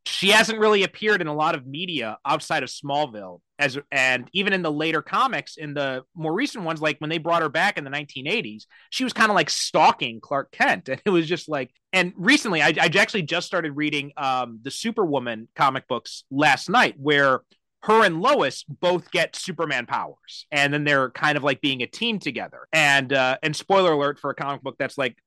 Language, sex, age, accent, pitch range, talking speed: English, male, 30-49, American, 135-165 Hz, 215 wpm